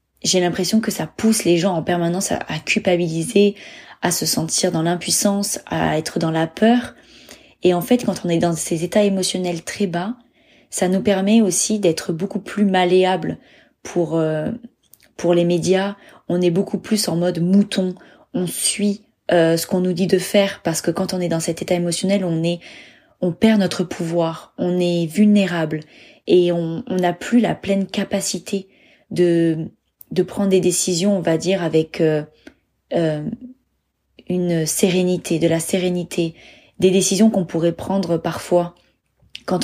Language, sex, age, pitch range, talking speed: French, female, 20-39, 170-195 Hz, 170 wpm